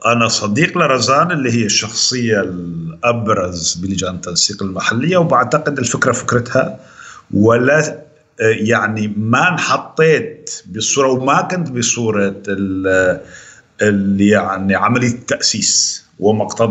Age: 50-69